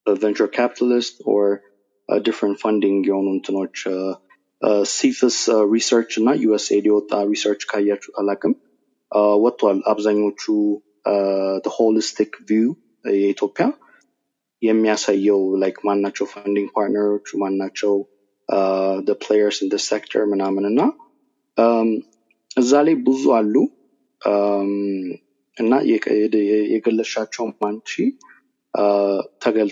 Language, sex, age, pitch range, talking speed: Amharic, male, 20-39, 100-115 Hz, 105 wpm